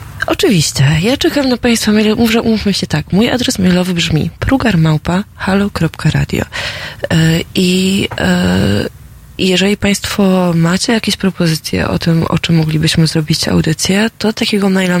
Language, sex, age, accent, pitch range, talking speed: Polish, female, 20-39, native, 160-200 Hz, 135 wpm